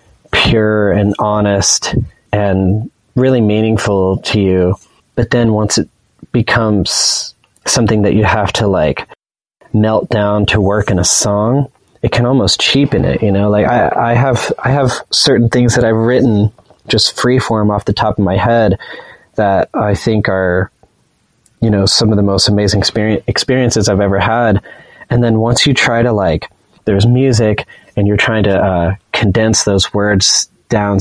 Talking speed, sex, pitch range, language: 165 wpm, male, 100-120 Hz, English